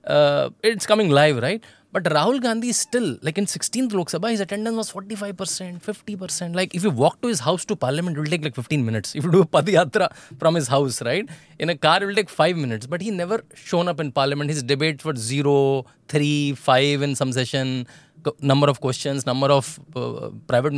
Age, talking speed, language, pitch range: 20-39, 215 wpm, English, 130-200 Hz